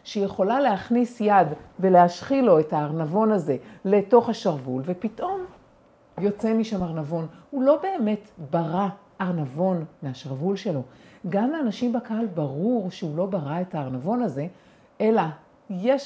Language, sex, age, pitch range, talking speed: Hebrew, female, 50-69, 170-240 Hz, 125 wpm